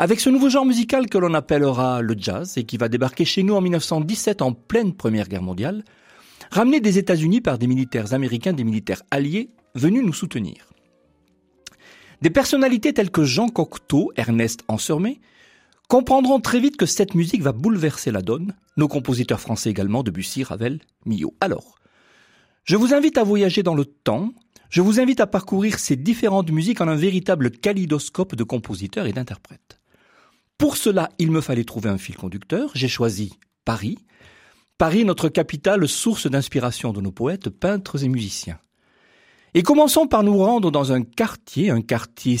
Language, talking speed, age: French, 170 wpm, 40-59